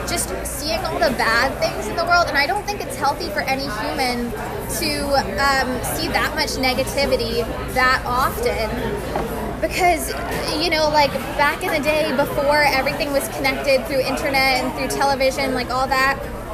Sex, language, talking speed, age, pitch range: female, English, 165 wpm, 10-29, 260-285 Hz